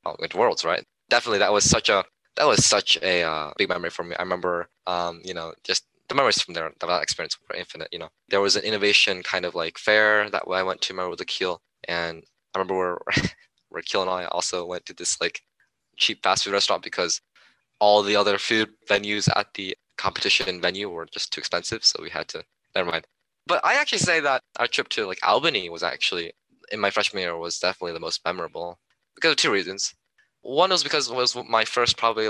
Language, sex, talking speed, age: English, male, 225 wpm, 20-39